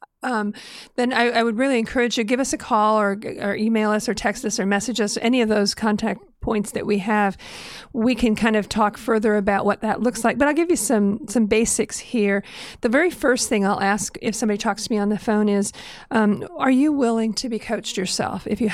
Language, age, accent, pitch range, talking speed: English, 50-69, American, 205-235 Hz, 235 wpm